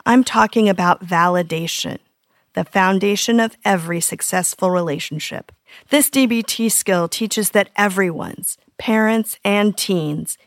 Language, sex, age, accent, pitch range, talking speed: English, female, 40-59, American, 180-245 Hz, 110 wpm